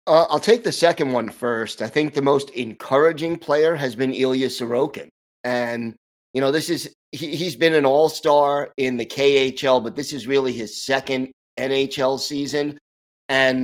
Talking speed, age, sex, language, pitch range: 165 wpm, 30-49, male, English, 115-145 Hz